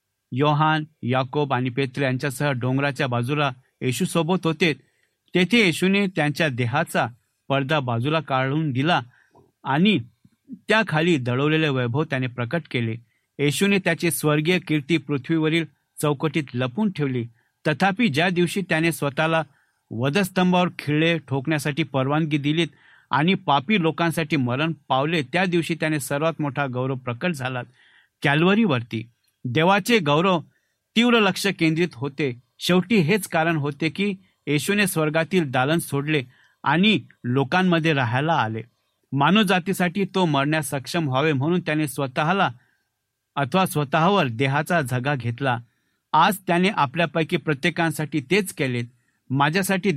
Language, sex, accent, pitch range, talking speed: Marathi, male, native, 135-170 Hz, 115 wpm